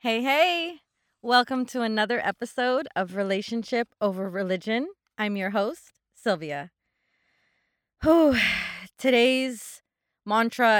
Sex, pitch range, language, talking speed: female, 185-230 Hz, English, 90 wpm